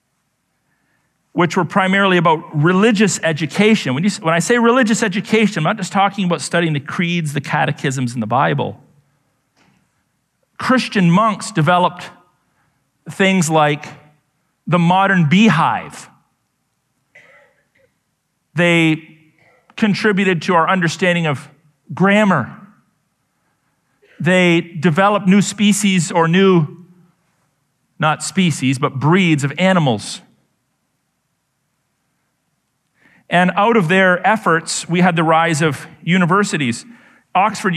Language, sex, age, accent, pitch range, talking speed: English, male, 40-59, American, 140-185 Hz, 105 wpm